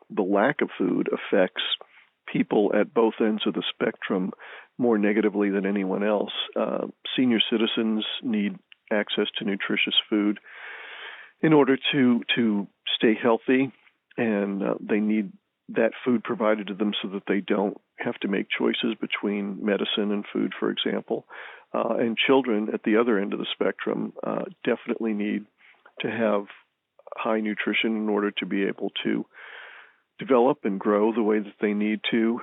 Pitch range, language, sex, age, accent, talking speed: 105-115 Hz, English, male, 50-69, American, 160 wpm